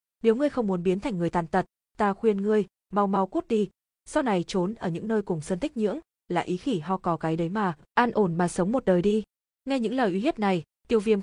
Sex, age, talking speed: female, 20-39, 260 wpm